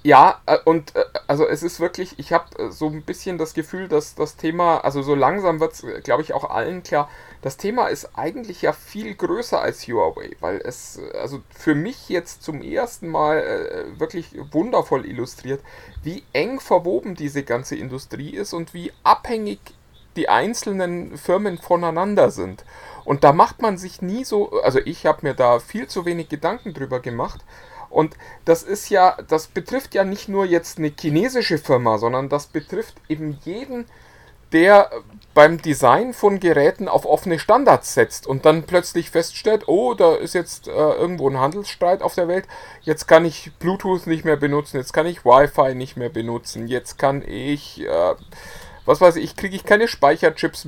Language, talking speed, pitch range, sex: German, 175 wpm, 145-195 Hz, male